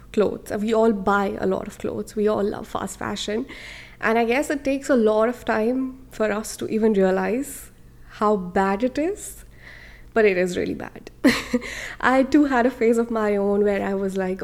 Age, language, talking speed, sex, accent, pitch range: 20-39, English, 200 wpm, female, Indian, 210-265 Hz